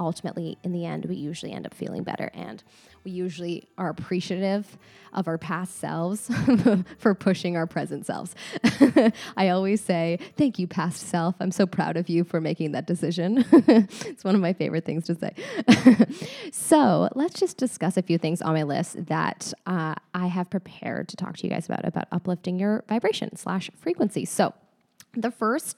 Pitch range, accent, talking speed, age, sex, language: 170-210 Hz, American, 180 wpm, 10-29, female, English